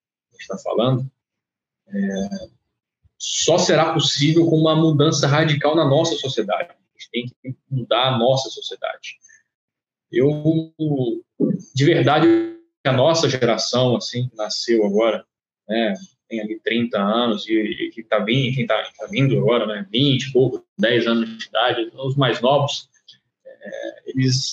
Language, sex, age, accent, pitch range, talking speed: Portuguese, male, 20-39, Brazilian, 120-165 Hz, 135 wpm